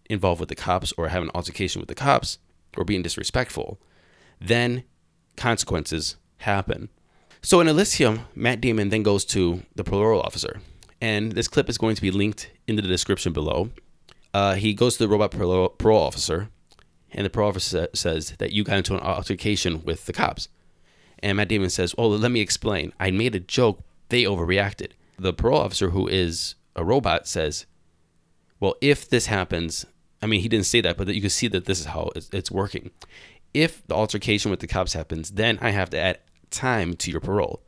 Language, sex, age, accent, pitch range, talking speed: English, male, 20-39, American, 90-110 Hz, 195 wpm